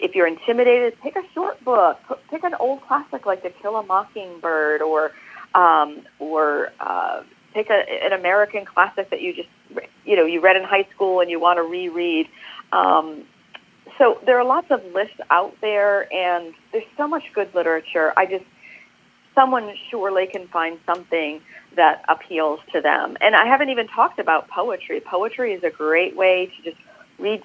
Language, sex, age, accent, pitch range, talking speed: English, female, 40-59, American, 170-230 Hz, 175 wpm